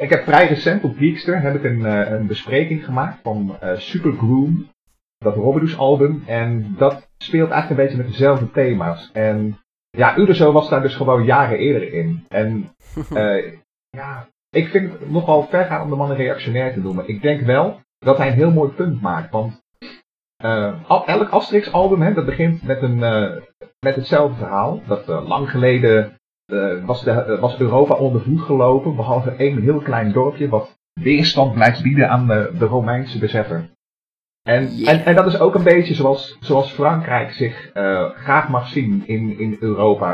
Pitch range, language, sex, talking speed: 110-150 Hz, Dutch, male, 175 wpm